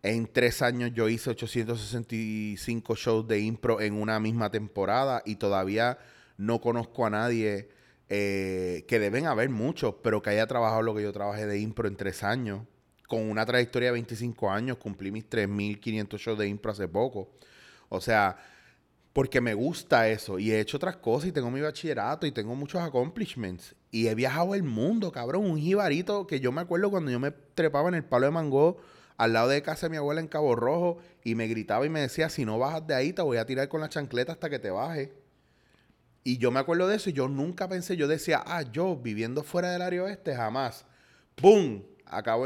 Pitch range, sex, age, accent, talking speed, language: 110-155 Hz, male, 30-49, Venezuelan, 205 wpm, Spanish